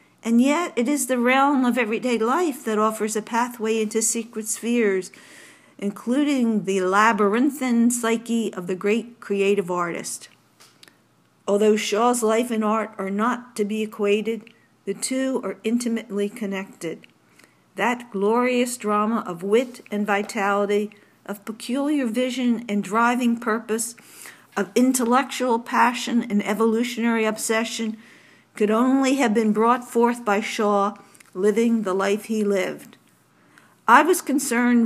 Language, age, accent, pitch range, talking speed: English, 50-69, American, 205-240 Hz, 130 wpm